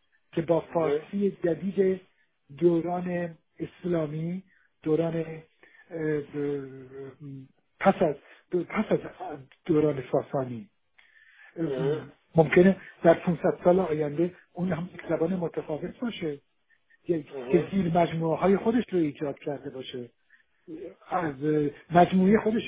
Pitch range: 155-205 Hz